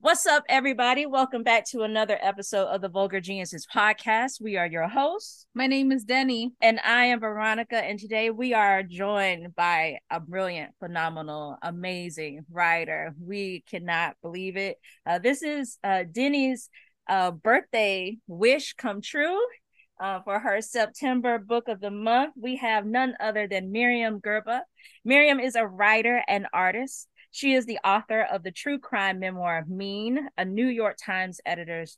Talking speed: 160 wpm